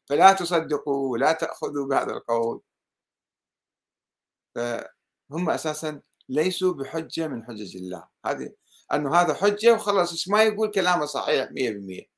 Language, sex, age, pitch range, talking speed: Arabic, male, 50-69, 130-200 Hz, 110 wpm